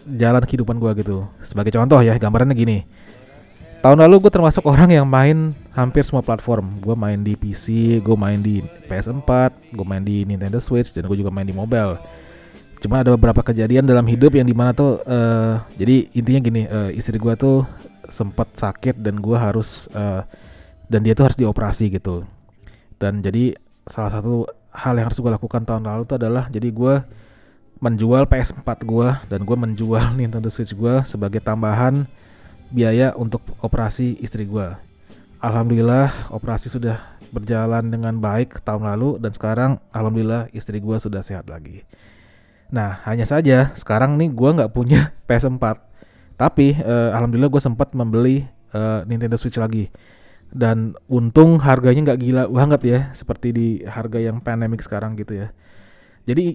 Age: 20-39